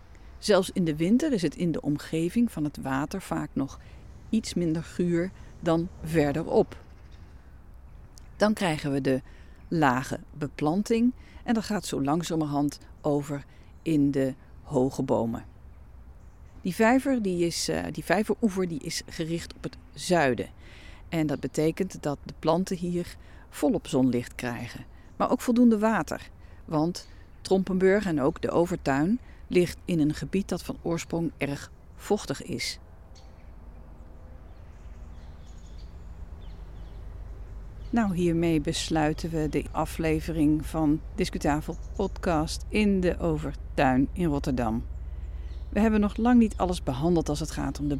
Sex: female